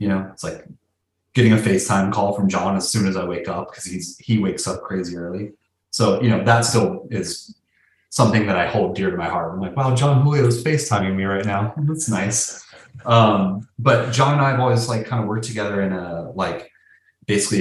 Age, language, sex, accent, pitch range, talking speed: 30-49, English, male, American, 90-115 Hz, 220 wpm